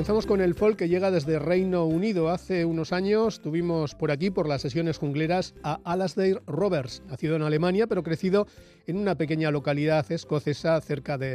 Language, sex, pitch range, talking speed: Spanish, male, 150-190 Hz, 180 wpm